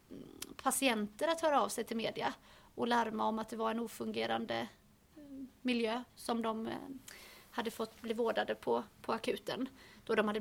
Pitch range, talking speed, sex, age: 225-255 Hz, 160 wpm, female, 30-49